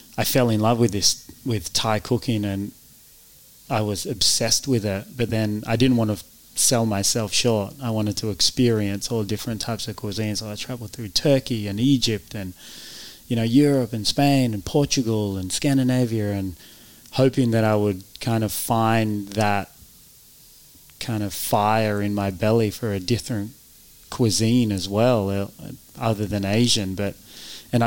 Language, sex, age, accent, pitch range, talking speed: English, male, 30-49, Australian, 100-115 Hz, 165 wpm